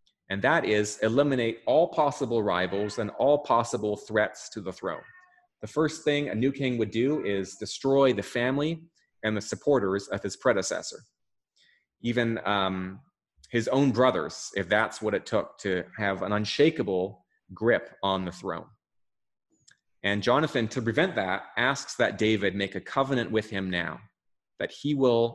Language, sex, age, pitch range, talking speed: English, male, 30-49, 95-115 Hz, 160 wpm